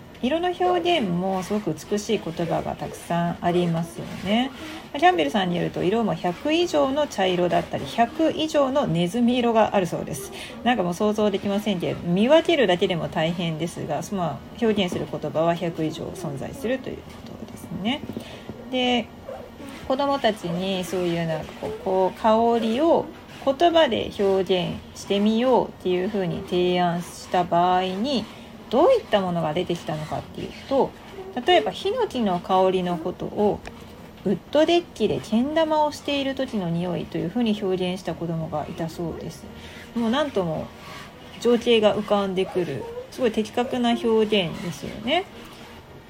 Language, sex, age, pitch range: Japanese, female, 40-59, 180-270 Hz